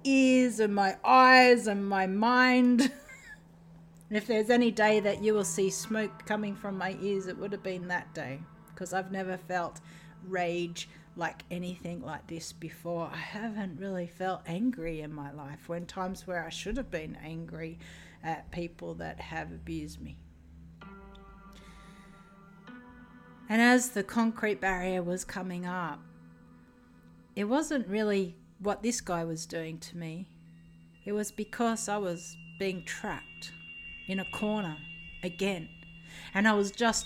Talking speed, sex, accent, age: 150 wpm, female, Australian, 50-69